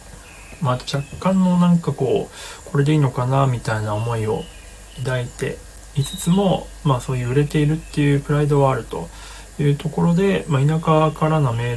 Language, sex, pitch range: Japanese, male, 120-155 Hz